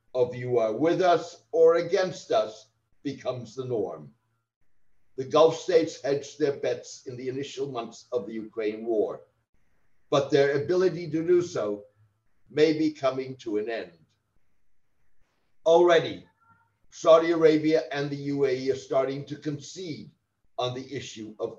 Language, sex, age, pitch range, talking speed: English, male, 60-79, 125-165 Hz, 140 wpm